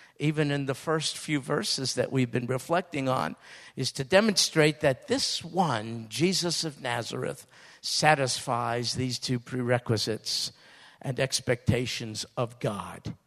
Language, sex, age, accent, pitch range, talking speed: English, male, 50-69, American, 130-205 Hz, 125 wpm